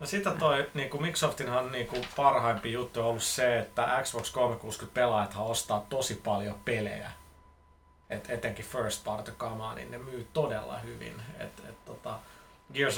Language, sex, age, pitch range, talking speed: Finnish, male, 30-49, 115-130 Hz, 145 wpm